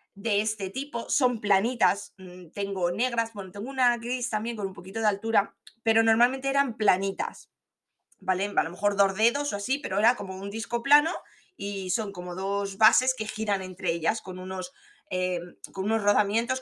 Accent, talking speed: Spanish, 180 wpm